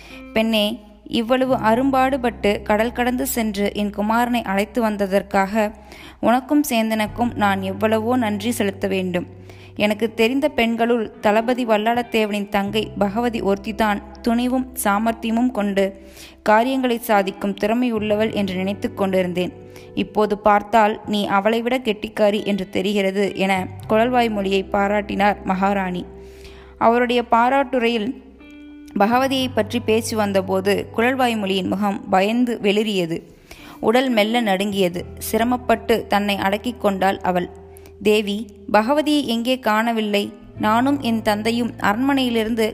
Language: Tamil